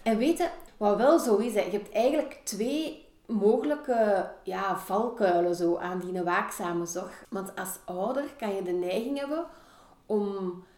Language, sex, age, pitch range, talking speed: Dutch, female, 40-59, 185-255 Hz, 140 wpm